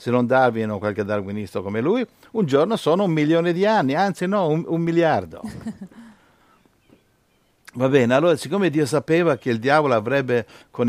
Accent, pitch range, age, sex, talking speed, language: native, 120-165 Hz, 60-79, male, 170 wpm, Italian